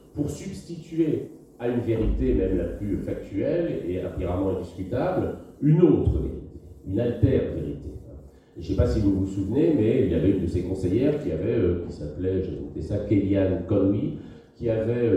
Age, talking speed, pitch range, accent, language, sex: 50-69, 180 wpm, 80-110 Hz, French, French, male